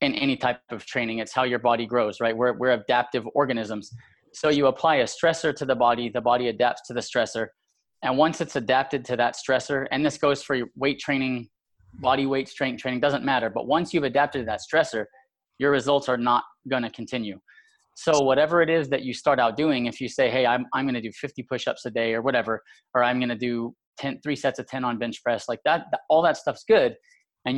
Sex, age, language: male, 20-39, English